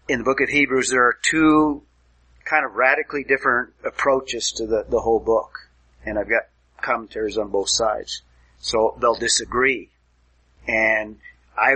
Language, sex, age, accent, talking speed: English, male, 40-59, American, 155 wpm